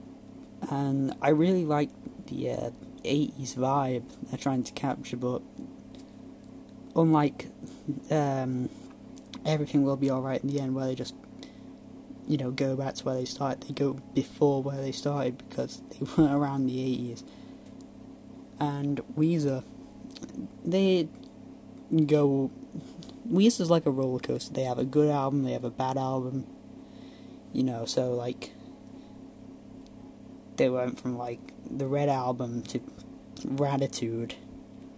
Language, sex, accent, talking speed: English, male, British, 130 wpm